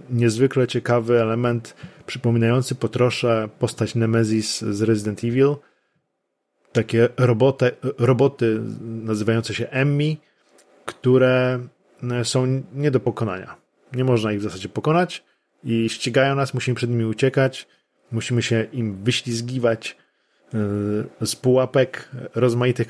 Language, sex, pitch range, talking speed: Polish, male, 110-125 Hz, 110 wpm